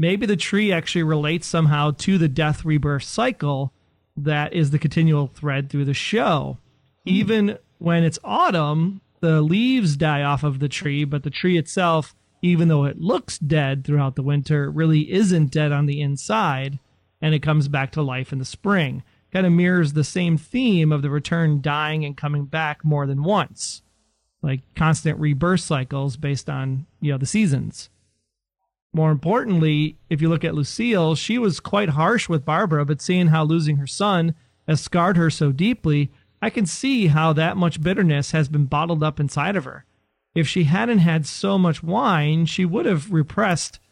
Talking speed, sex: 180 wpm, male